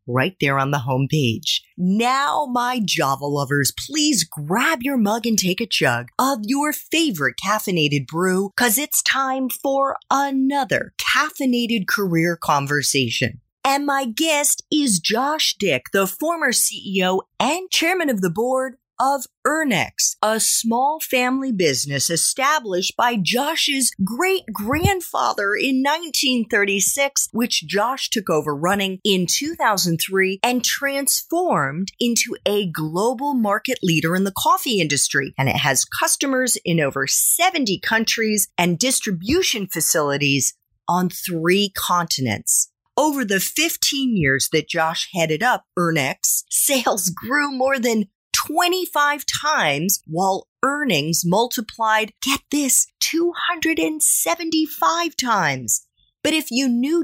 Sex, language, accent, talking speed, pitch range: female, English, American, 120 wpm, 180-280 Hz